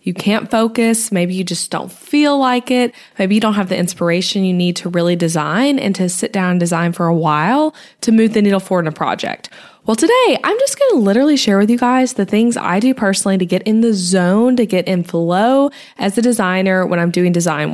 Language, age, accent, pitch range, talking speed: English, 20-39, American, 180-230 Hz, 235 wpm